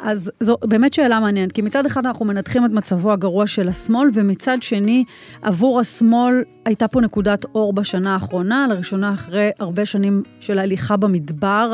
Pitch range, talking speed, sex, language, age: 195-235 Hz, 165 wpm, female, Hebrew, 30-49